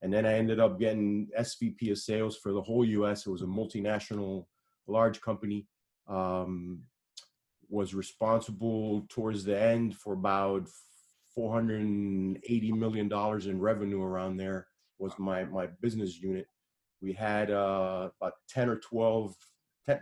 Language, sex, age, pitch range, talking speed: English, male, 30-49, 95-115 Hz, 135 wpm